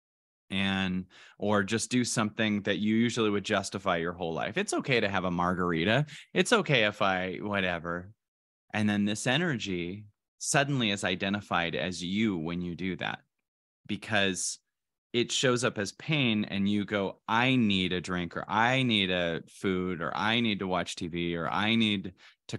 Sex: male